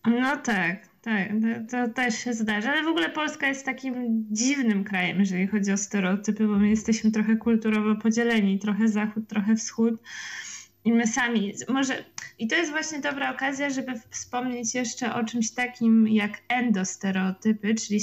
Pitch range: 200-235 Hz